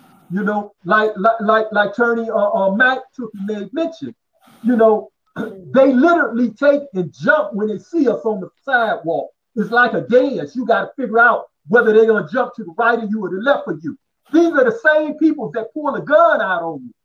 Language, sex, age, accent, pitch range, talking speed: English, male, 50-69, American, 205-270 Hz, 220 wpm